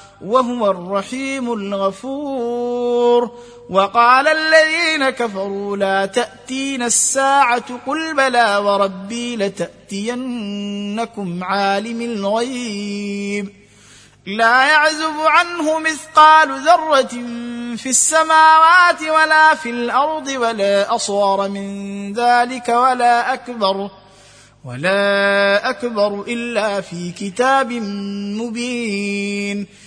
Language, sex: Arabic, male